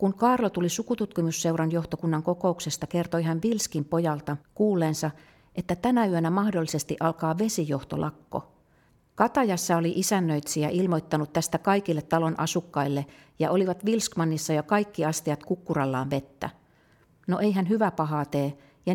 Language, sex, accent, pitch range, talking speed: Finnish, female, native, 150-180 Hz, 125 wpm